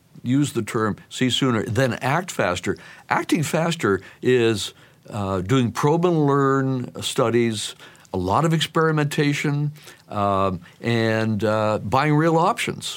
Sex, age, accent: male, 60-79, American